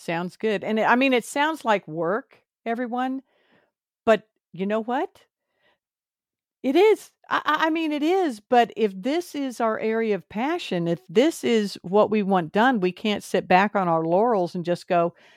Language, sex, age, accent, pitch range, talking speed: English, female, 50-69, American, 180-235 Hz, 180 wpm